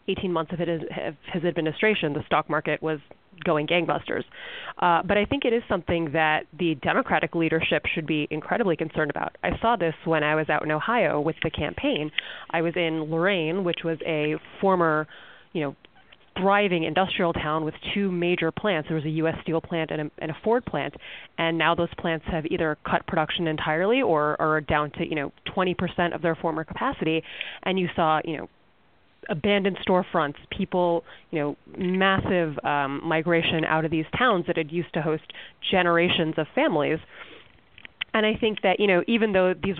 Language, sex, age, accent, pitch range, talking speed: English, female, 30-49, American, 160-195 Hz, 185 wpm